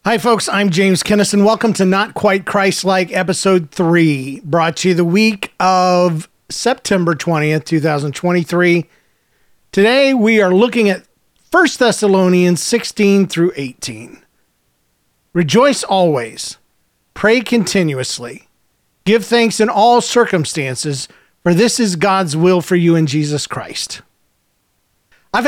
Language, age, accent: English, 40-59, American